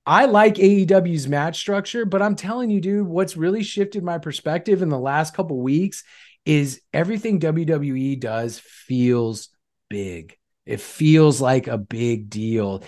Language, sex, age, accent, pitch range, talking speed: English, male, 30-49, American, 130-185 Hz, 155 wpm